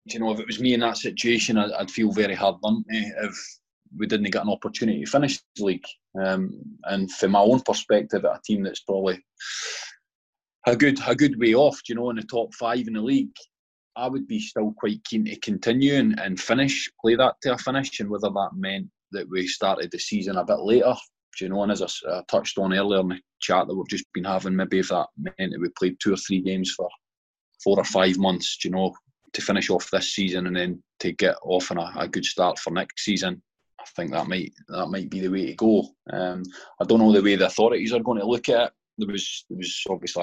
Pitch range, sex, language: 95-120 Hz, male, English